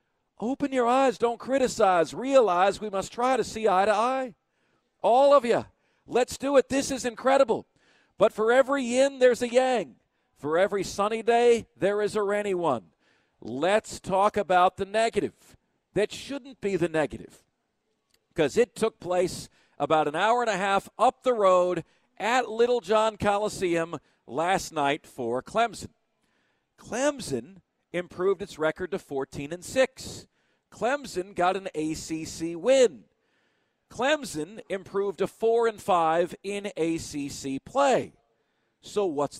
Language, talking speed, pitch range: English, 140 wpm, 175-245 Hz